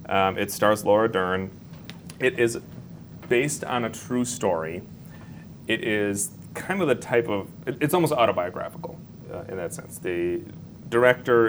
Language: English